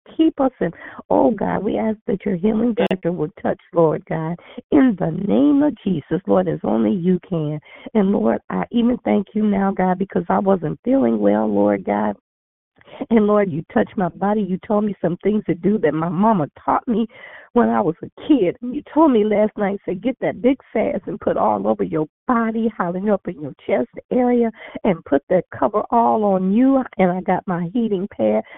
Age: 50-69